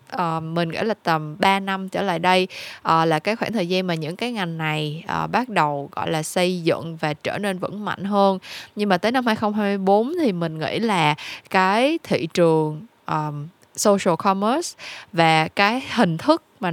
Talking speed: 195 wpm